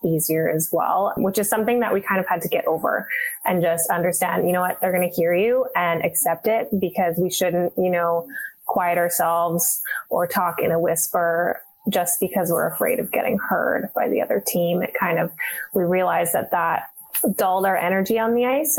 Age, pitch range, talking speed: 20-39, 175-215 Hz, 205 wpm